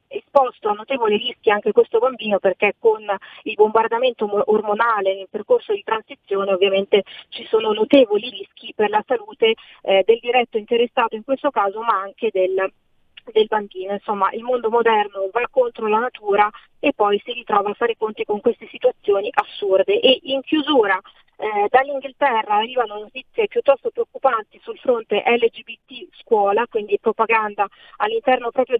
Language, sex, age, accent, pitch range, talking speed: Italian, female, 30-49, native, 215-275 Hz, 150 wpm